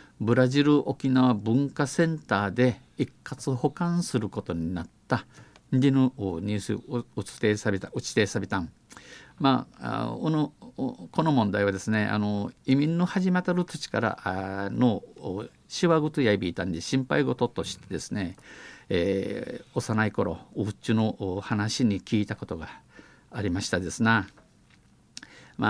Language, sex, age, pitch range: Japanese, male, 50-69, 100-125 Hz